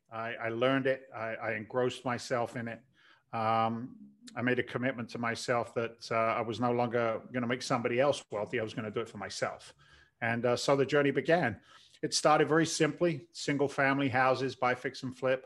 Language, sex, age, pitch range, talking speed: English, male, 40-59, 115-135 Hz, 210 wpm